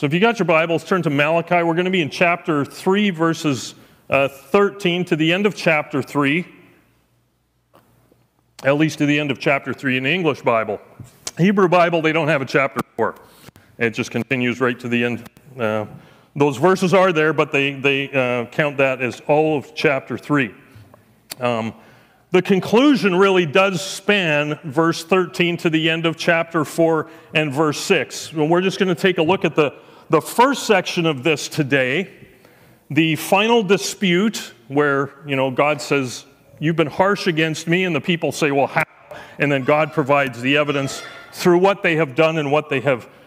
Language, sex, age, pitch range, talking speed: English, male, 40-59, 140-180 Hz, 185 wpm